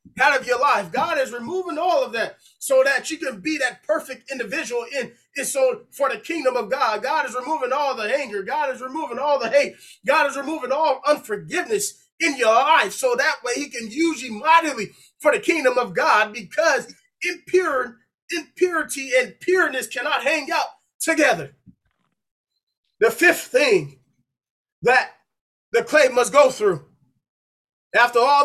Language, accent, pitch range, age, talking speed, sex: English, American, 240-320 Hz, 20-39, 165 wpm, male